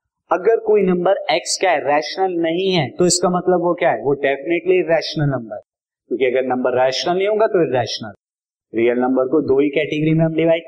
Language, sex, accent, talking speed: Hindi, male, native, 200 wpm